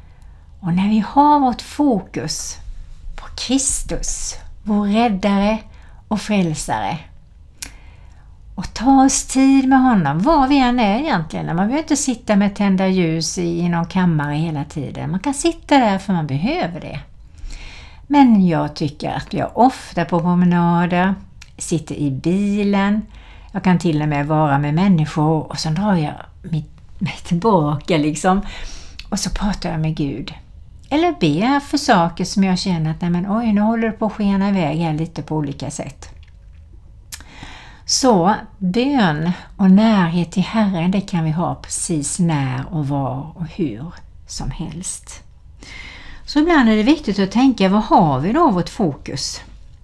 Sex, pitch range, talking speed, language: female, 150-210 Hz, 155 wpm, Swedish